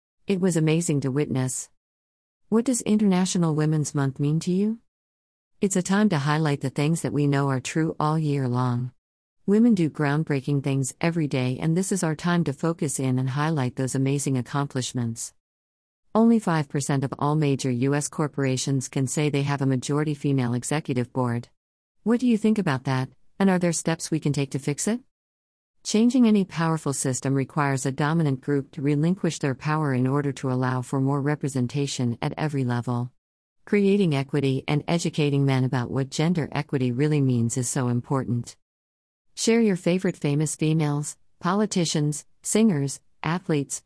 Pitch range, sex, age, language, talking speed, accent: 130-165 Hz, female, 50-69, English, 170 wpm, American